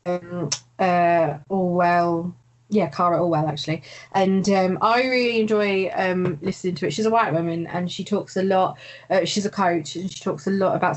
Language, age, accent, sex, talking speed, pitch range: English, 20-39, British, female, 190 wpm, 170-200 Hz